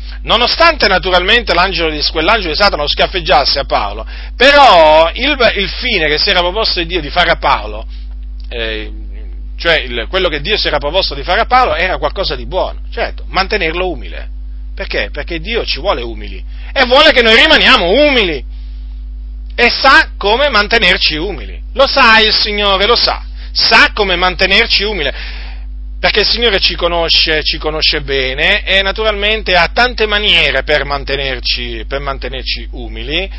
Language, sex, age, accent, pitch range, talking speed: Italian, male, 40-59, native, 130-205 Hz, 160 wpm